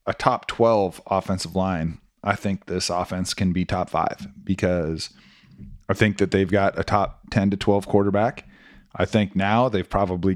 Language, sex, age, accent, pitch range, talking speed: English, male, 30-49, American, 95-120 Hz, 175 wpm